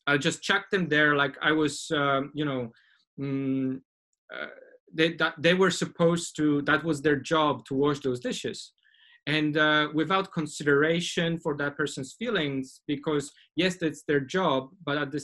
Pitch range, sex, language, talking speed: 145-170 Hz, male, English, 170 wpm